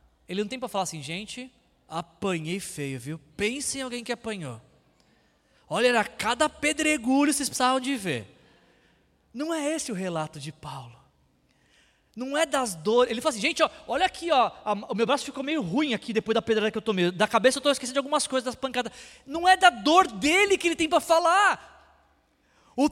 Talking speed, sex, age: 200 wpm, male, 20-39